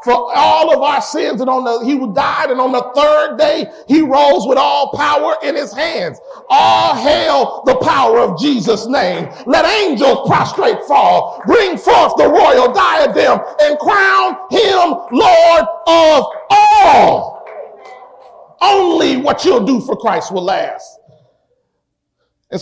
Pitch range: 205-310 Hz